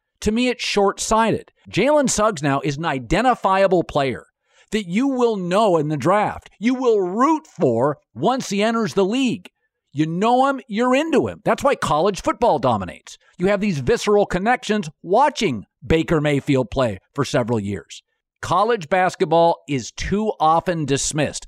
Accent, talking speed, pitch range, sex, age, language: American, 155 wpm, 150-210 Hz, male, 50-69, English